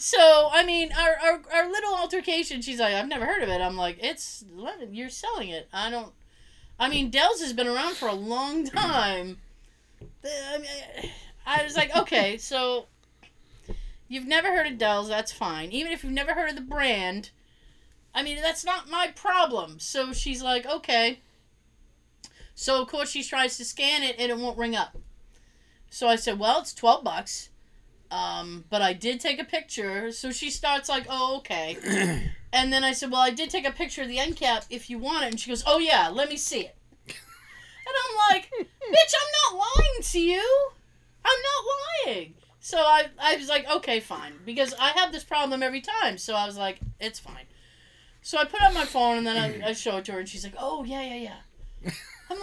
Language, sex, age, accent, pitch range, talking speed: English, female, 30-49, American, 230-320 Hz, 205 wpm